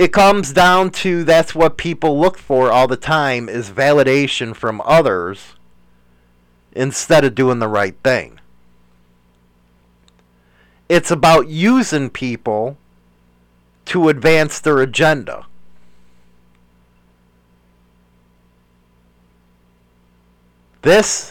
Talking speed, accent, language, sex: 85 wpm, American, English, male